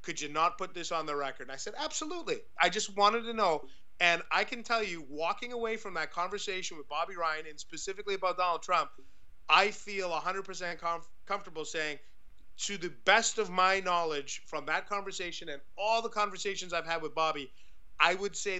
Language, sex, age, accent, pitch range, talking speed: English, male, 30-49, American, 160-205 Hz, 195 wpm